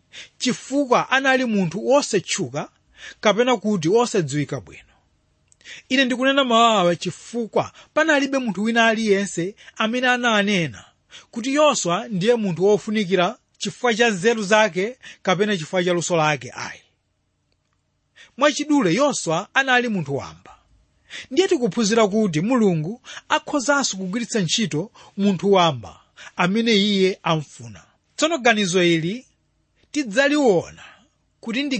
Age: 30-49